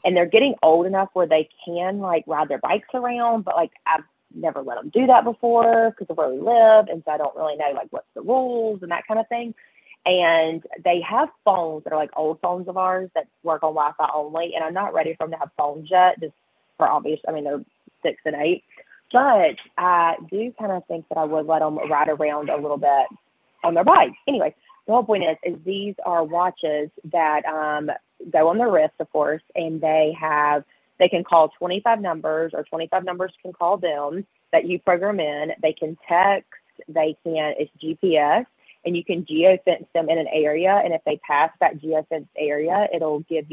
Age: 30-49